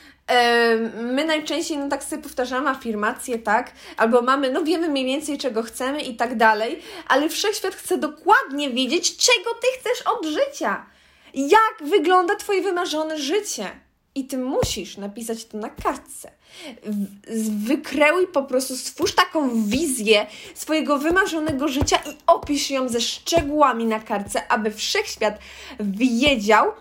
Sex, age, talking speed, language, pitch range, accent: female, 20-39, 135 wpm, English, 245-335 Hz, Polish